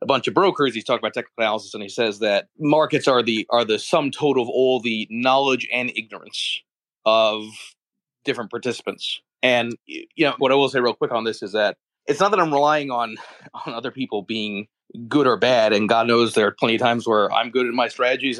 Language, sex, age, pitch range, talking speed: English, male, 30-49, 110-135 Hz, 225 wpm